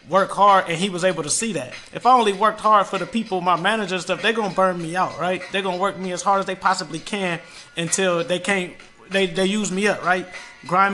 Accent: American